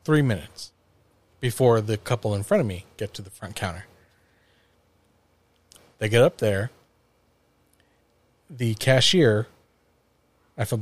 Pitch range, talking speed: 105-140 Hz, 120 wpm